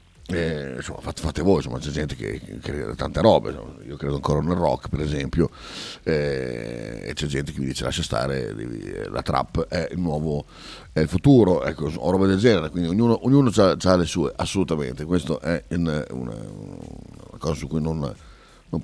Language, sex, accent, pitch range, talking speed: Italian, male, native, 75-90 Hz, 190 wpm